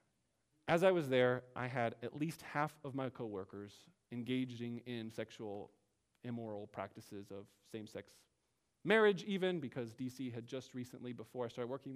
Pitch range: 115-150 Hz